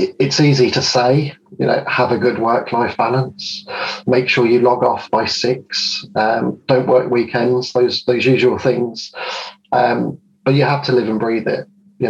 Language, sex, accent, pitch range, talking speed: English, male, British, 115-135 Hz, 180 wpm